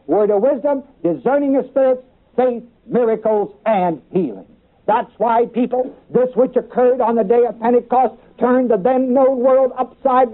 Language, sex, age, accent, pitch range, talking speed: English, male, 60-79, American, 230-265 Hz, 155 wpm